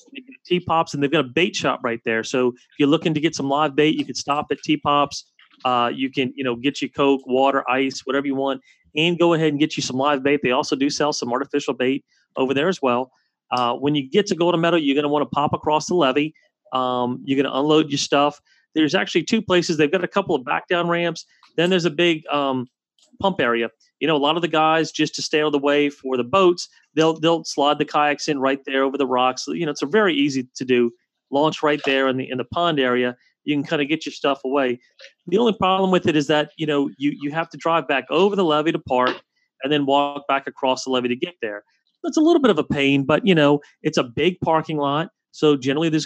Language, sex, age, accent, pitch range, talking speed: English, male, 30-49, American, 135-165 Hz, 260 wpm